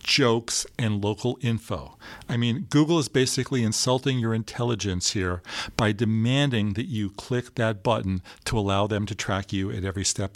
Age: 50-69